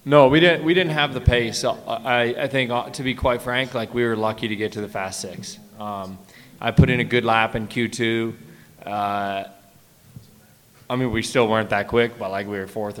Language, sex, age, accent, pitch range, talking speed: English, male, 20-39, American, 105-125 Hz, 215 wpm